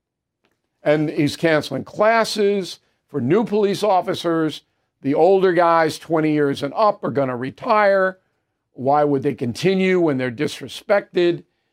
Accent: American